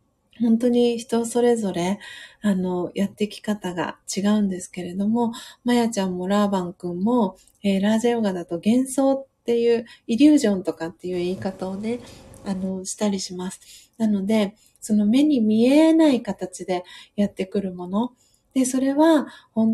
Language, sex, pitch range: Japanese, female, 190-245 Hz